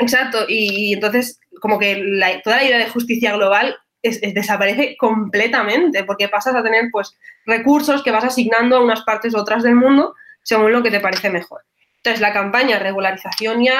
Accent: Spanish